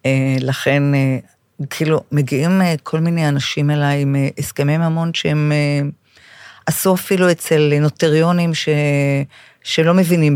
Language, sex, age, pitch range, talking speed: Hebrew, female, 50-69, 140-165 Hz, 105 wpm